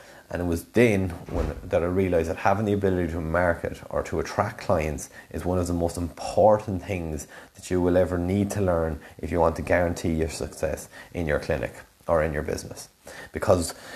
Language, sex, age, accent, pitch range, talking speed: English, male, 30-49, Irish, 85-100 Hz, 200 wpm